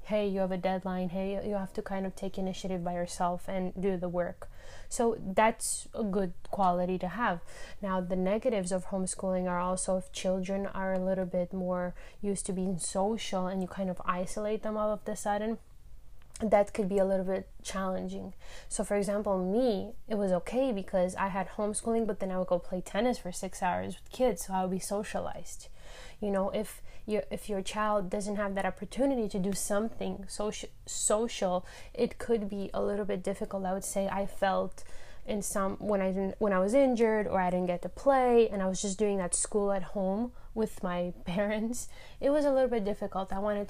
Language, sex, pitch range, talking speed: English, female, 190-215 Hz, 210 wpm